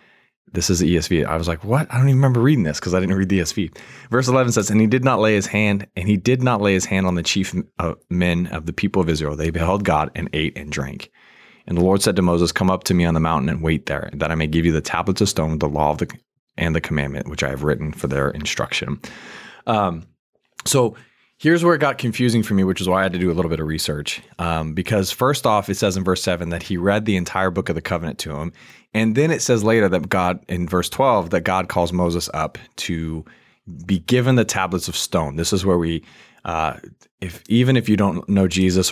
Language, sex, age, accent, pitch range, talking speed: English, male, 20-39, American, 80-105 Hz, 255 wpm